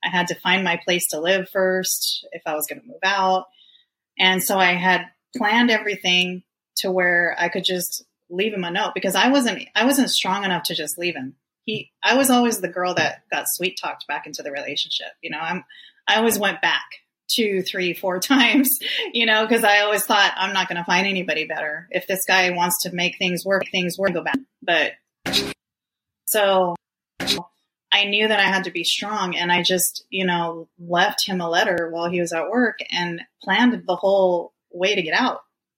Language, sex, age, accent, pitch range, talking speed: English, female, 30-49, American, 175-210 Hz, 210 wpm